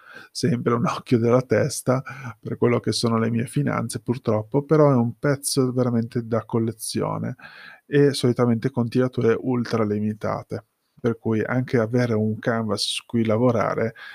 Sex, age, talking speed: male, 20-39, 150 wpm